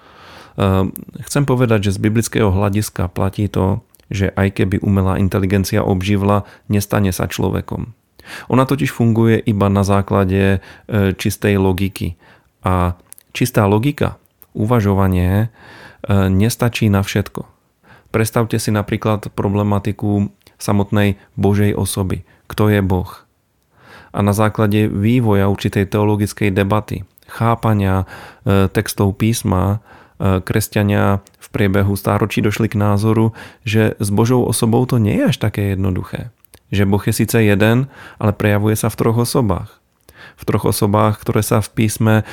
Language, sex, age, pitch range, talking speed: Slovak, male, 30-49, 100-110 Hz, 125 wpm